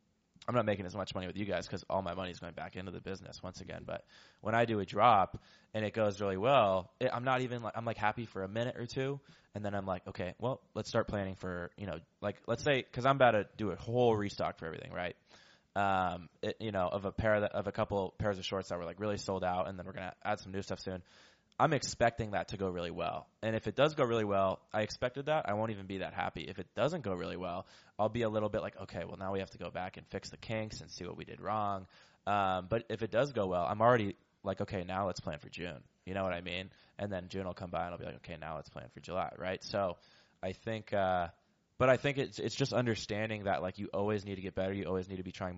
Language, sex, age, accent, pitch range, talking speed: English, male, 20-39, American, 95-110 Hz, 285 wpm